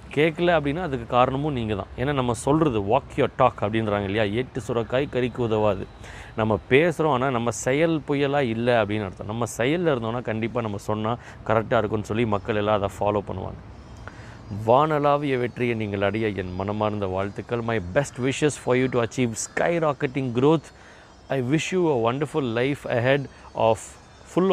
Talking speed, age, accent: 160 wpm, 30-49, native